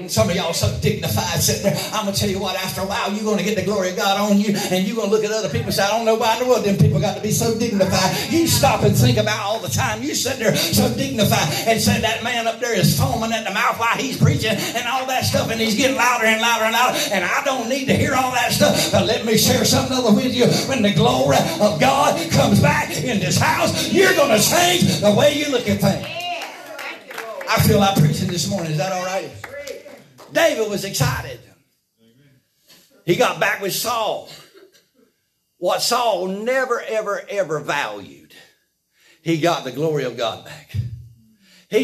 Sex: male